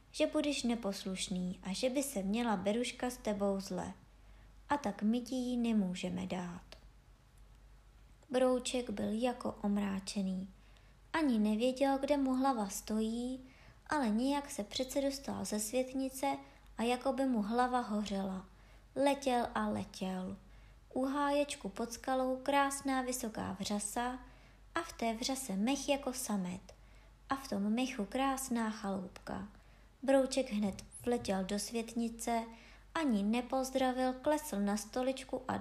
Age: 20-39